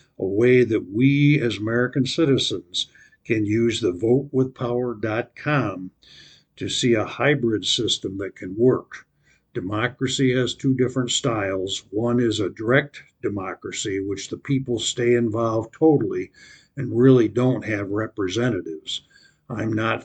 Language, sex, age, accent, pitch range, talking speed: English, male, 60-79, American, 110-130 Hz, 125 wpm